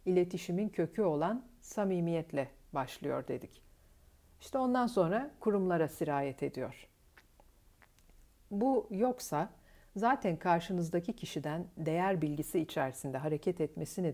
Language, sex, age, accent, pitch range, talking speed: Turkish, female, 60-79, native, 145-195 Hz, 95 wpm